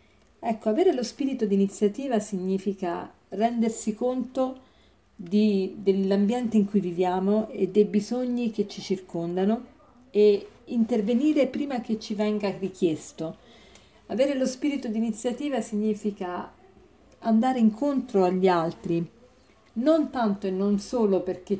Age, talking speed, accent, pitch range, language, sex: 40-59, 115 wpm, native, 195-240 Hz, Italian, female